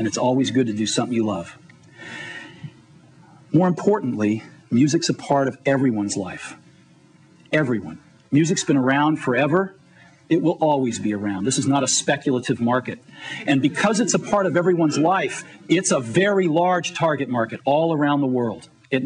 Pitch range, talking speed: 130-185 Hz, 165 wpm